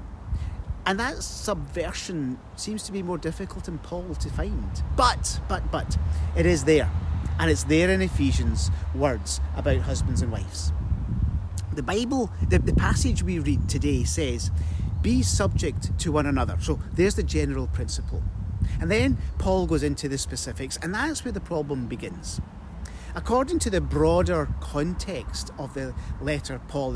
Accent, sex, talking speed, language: British, male, 155 wpm, English